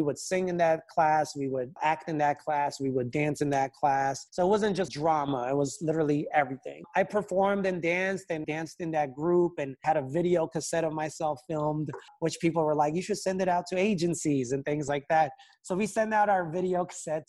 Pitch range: 145-180 Hz